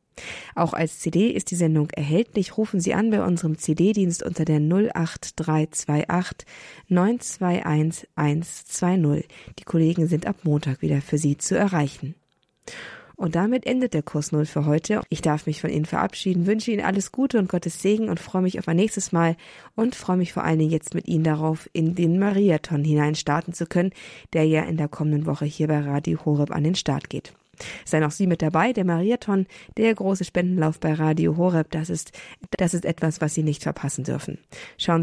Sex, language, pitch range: female, German, 155-185 Hz